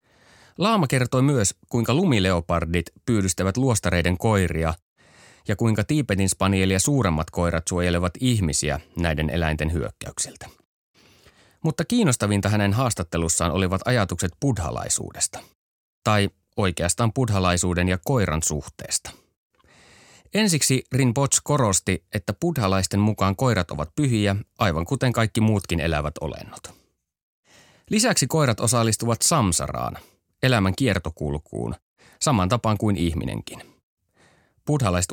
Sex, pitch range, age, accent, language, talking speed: male, 85-120 Hz, 30-49, native, Finnish, 100 wpm